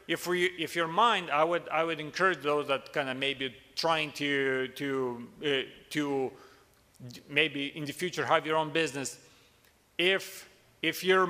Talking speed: 160 wpm